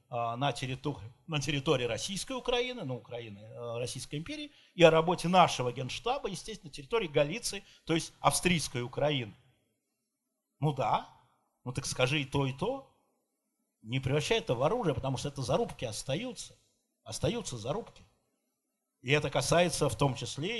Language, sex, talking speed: Russian, male, 150 wpm